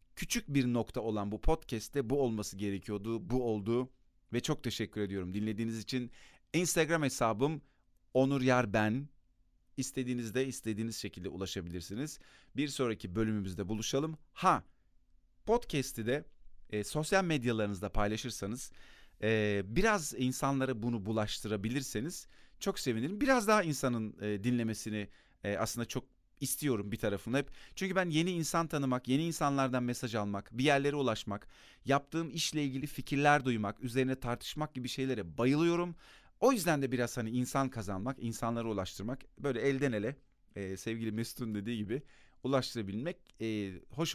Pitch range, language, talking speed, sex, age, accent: 105-140 Hz, Turkish, 130 wpm, male, 40-59, native